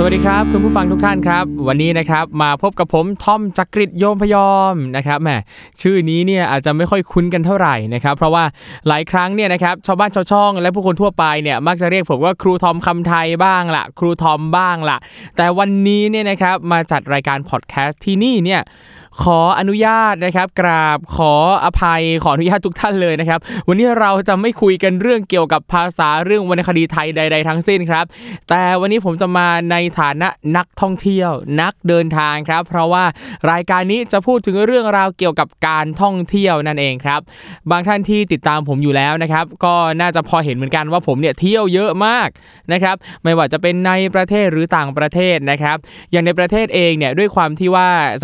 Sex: male